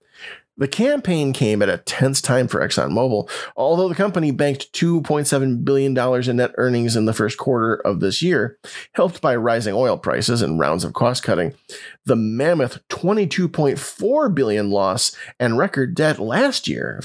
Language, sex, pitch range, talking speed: English, male, 125-170 Hz, 160 wpm